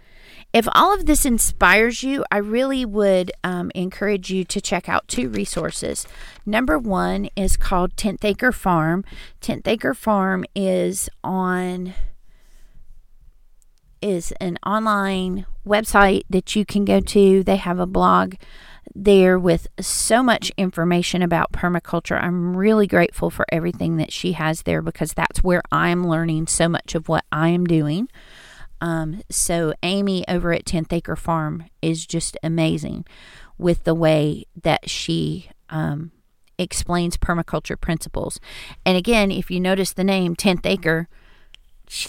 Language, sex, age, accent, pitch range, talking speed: English, female, 40-59, American, 165-195 Hz, 145 wpm